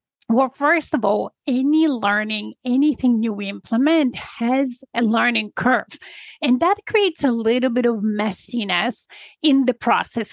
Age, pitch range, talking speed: 30-49, 220-290 Hz, 145 wpm